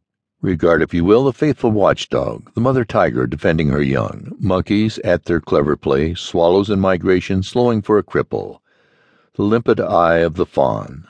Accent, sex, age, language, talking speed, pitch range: American, male, 60-79, English, 170 wpm, 80-105 Hz